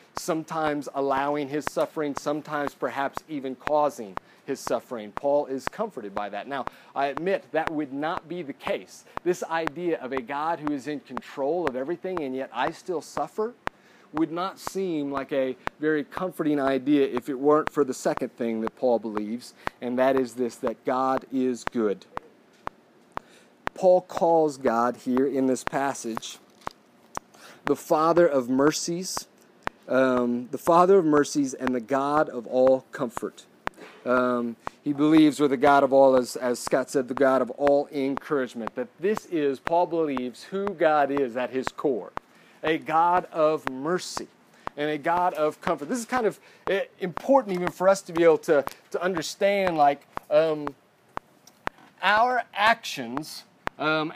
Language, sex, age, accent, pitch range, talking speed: English, male, 40-59, American, 130-165 Hz, 160 wpm